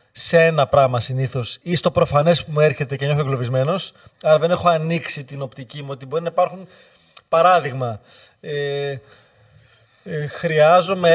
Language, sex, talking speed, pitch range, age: Greek, male, 145 wpm, 145-180 Hz, 30-49